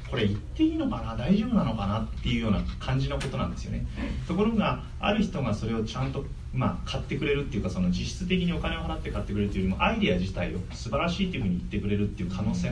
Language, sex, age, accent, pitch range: Japanese, male, 30-49, native, 95-155 Hz